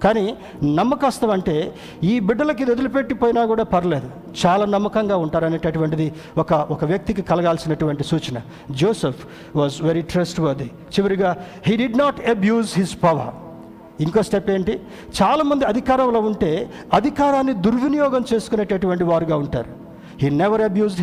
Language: Telugu